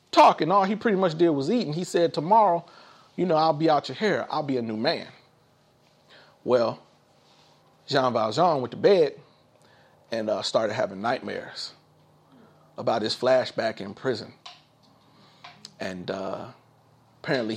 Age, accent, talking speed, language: 30-49, American, 145 wpm, English